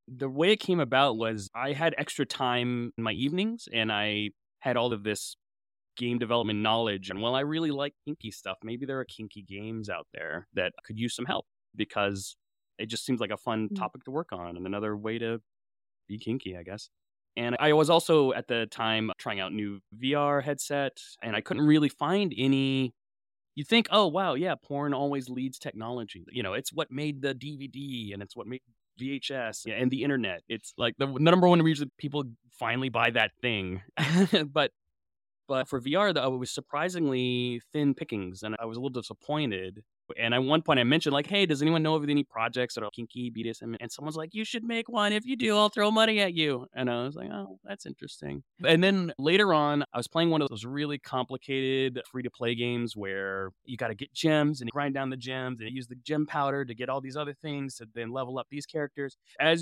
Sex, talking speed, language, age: male, 215 wpm, English, 20-39